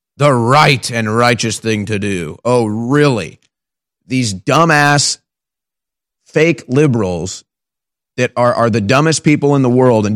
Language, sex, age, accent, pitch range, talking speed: English, male, 30-49, American, 130-180 Hz, 135 wpm